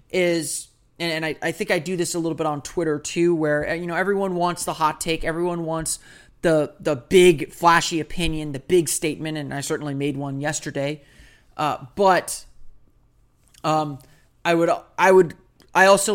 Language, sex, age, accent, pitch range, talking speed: English, male, 30-49, American, 150-185 Hz, 170 wpm